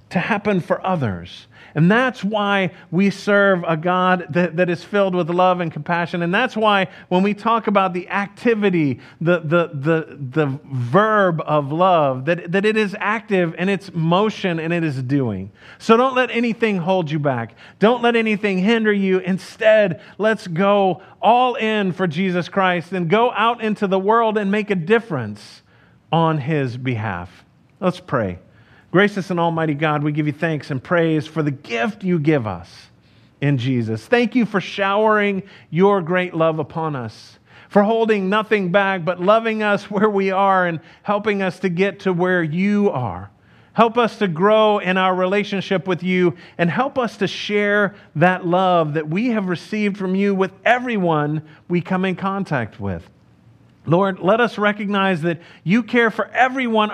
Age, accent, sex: 40-59, American, male